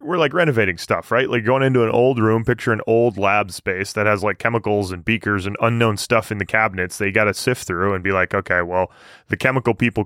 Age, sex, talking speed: 20-39, male, 245 wpm